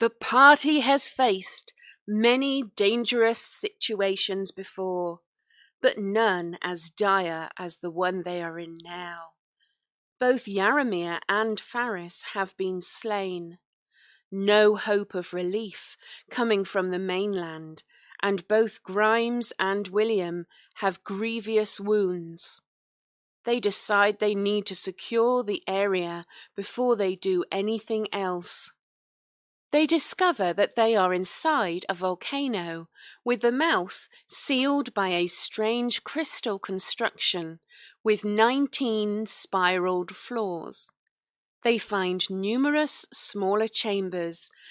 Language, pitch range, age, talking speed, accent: English, 185-235 Hz, 30-49, 110 wpm, British